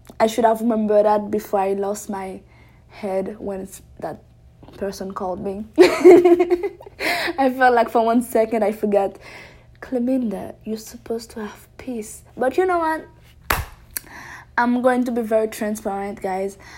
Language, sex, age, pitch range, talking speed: English, female, 20-39, 195-225 Hz, 145 wpm